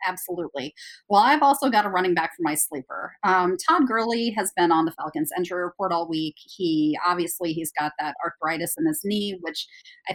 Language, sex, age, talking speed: English, female, 30-49, 200 wpm